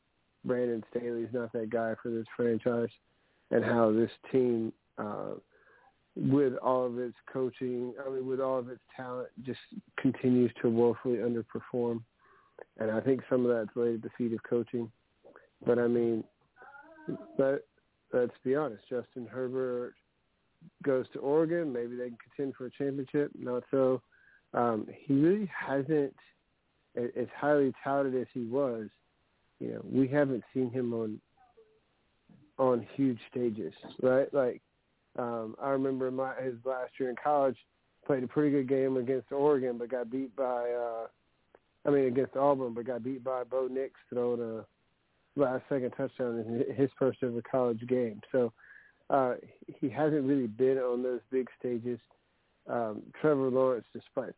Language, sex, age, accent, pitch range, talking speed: English, male, 40-59, American, 120-135 Hz, 155 wpm